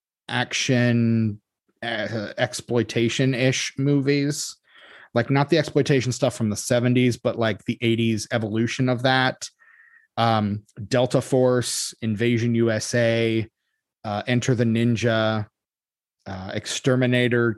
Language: English